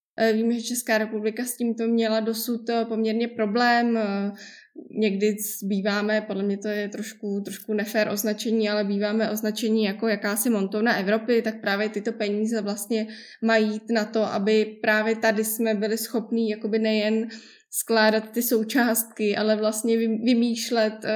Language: Czech